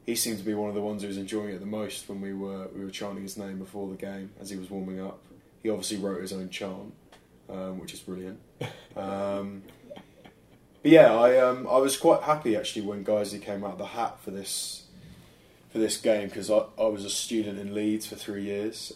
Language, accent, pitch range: English, British, 100-110 Hz